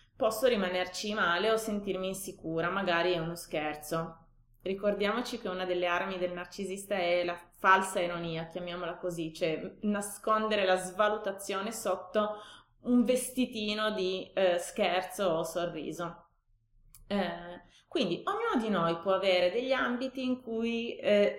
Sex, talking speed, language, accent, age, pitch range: female, 130 wpm, Italian, native, 20-39, 180-230 Hz